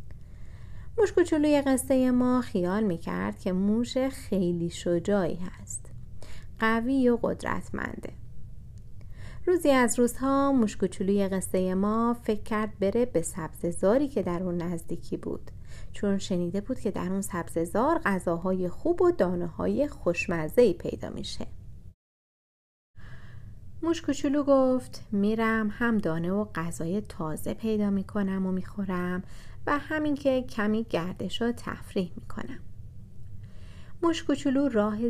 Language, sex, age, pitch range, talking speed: Persian, female, 30-49, 170-235 Hz, 120 wpm